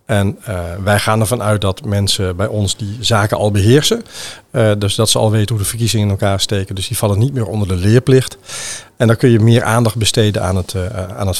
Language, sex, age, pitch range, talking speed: Dutch, male, 50-69, 100-115 Hz, 230 wpm